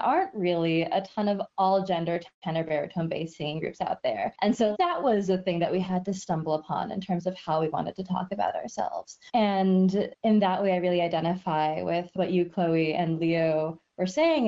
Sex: female